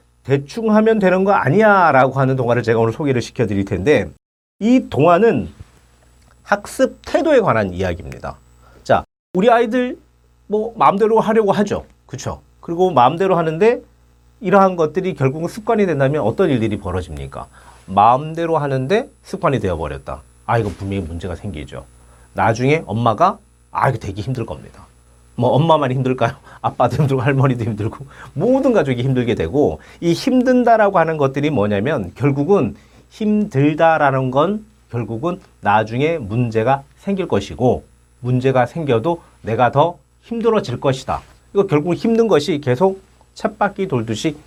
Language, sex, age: Korean, male, 40-59